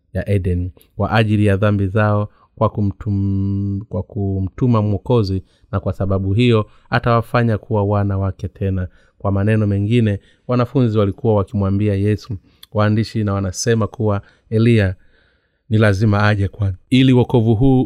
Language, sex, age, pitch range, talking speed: Swahili, male, 30-49, 100-120 Hz, 135 wpm